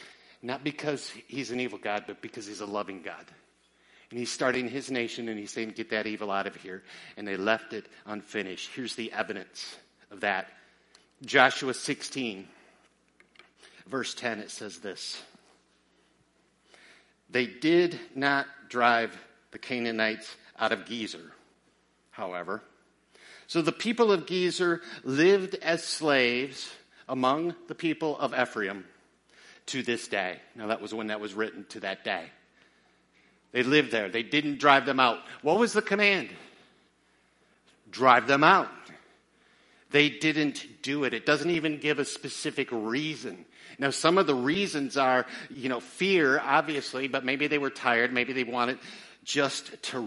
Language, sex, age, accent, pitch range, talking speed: English, male, 50-69, American, 115-150 Hz, 150 wpm